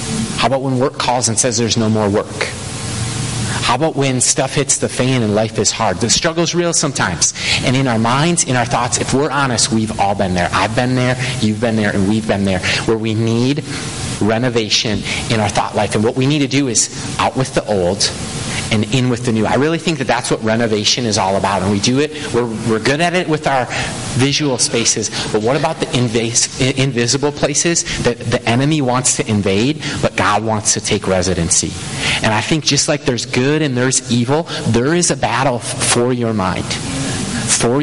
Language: English